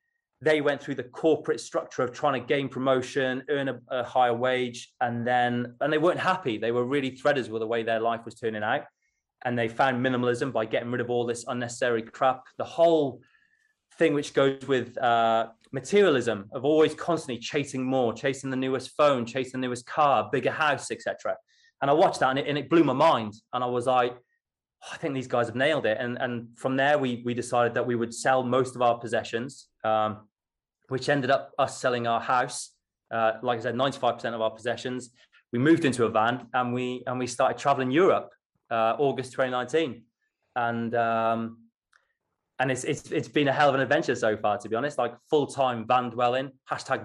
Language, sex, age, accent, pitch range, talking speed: English, male, 20-39, British, 120-140 Hz, 205 wpm